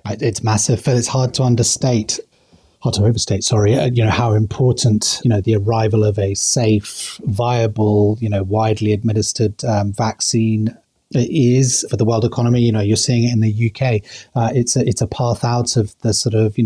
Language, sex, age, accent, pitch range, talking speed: English, male, 30-49, British, 110-125 Hz, 195 wpm